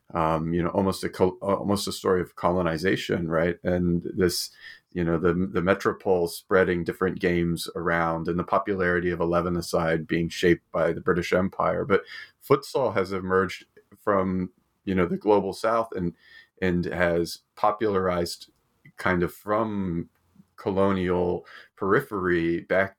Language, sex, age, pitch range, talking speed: English, male, 30-49, 85-95 Hz, 140 wpm